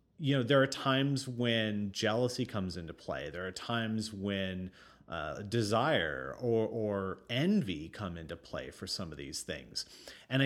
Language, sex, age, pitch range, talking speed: English, male, 30-49, 100-140 Hz, 160 wpm